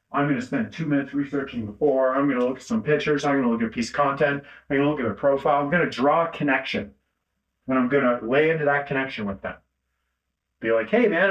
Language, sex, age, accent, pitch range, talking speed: English, male, 40-59, American, 125-165 Hz, 270 wpm